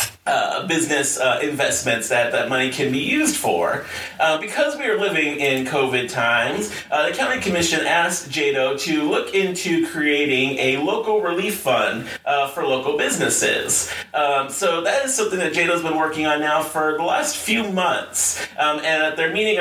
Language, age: English, 30-49